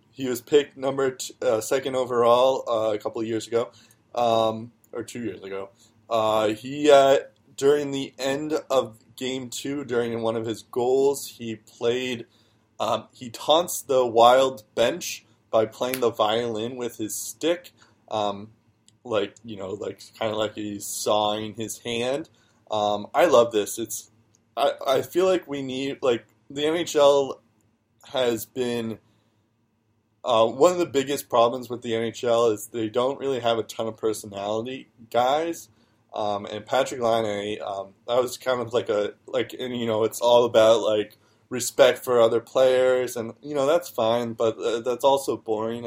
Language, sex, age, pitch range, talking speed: English, male, 20-39, 110-130 Hz, 165 wpm